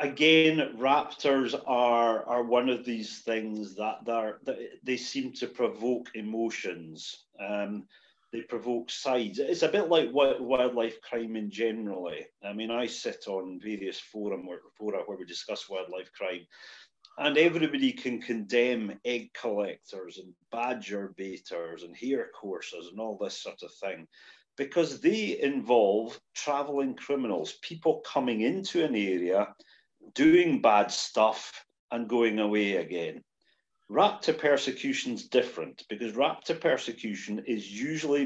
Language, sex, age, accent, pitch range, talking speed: English, male, 40-59, British, 105-145 Hz, 135 wpm